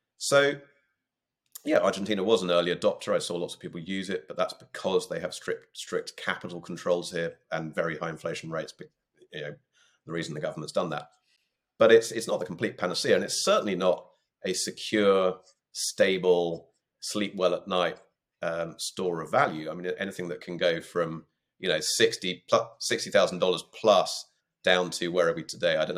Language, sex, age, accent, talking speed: English, male, 40-59, British, 185 wpm